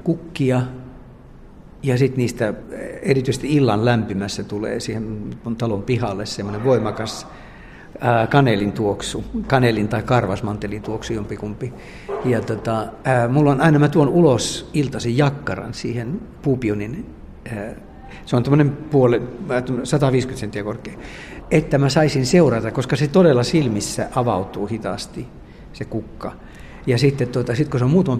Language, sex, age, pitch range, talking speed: Finnish, male, 60-79, 110-135 Hz, 120 wpm